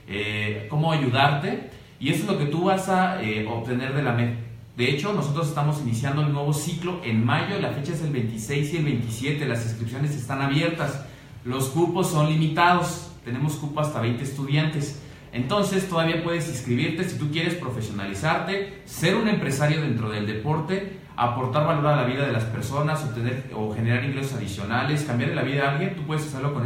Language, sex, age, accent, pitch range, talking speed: Spanish, male, 40-59, Mexican, 120-155 Hz, 185 wpm